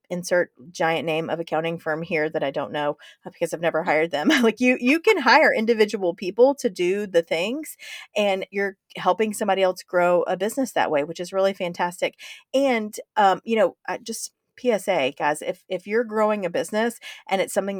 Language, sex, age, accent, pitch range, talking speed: English, female, 30-49, American, 175-220 Hz, 190 wpm